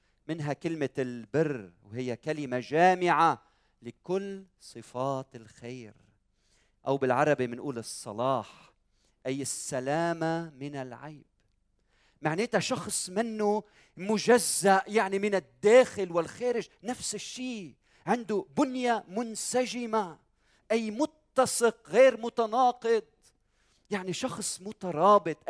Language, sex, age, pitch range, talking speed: Arabic, male, 40-59, 120-200 Hz, 85 wpm